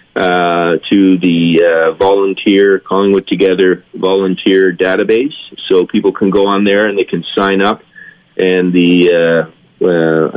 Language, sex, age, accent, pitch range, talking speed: English, male, 30-49, American, 85-100 Hz, 140 wpm